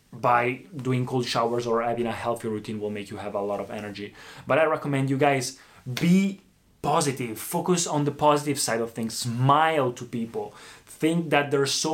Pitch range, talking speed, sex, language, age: 115-145 Hz, 190 wpm, male, Italian, 20-39